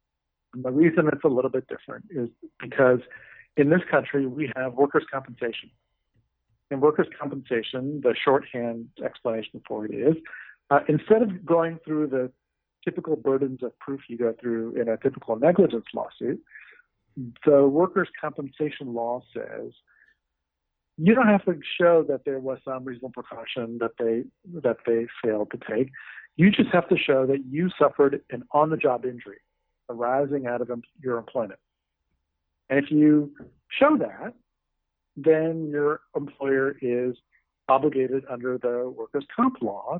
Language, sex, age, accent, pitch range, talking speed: English, male, 50-69, American, 120-155 Hz, 145 wpm